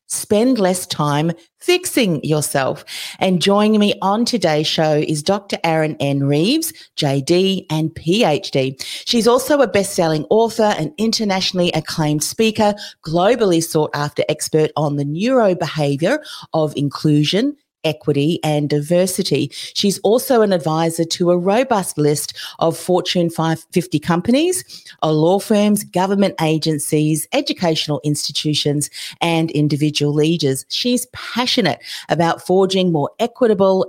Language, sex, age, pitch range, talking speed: English, female, 40-59, 150-200 Hz, 120 wpm